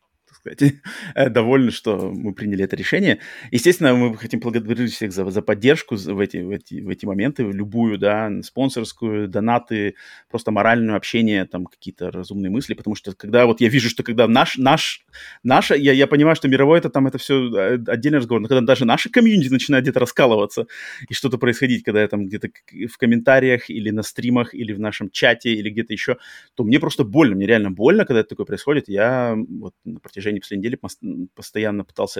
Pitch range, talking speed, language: 105-130 Hz, 185 wpm, Russian